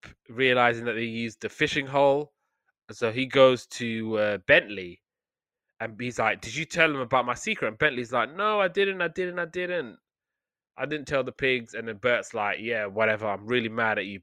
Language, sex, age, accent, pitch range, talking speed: English, male, 20-39, British, 110-130 Hz, 210 wpm